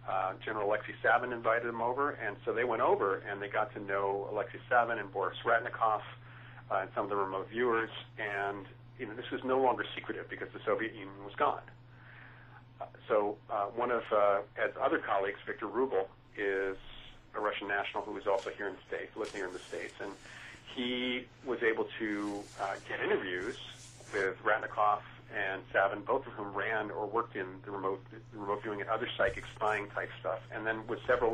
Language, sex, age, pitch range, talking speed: English, male, 40-59, 100-120 Hz, 200 wpm